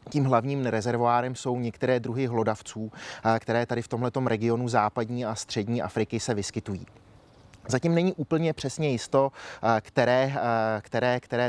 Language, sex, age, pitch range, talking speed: Czech, male, 30-49, 110-125 Hz, 135 wpm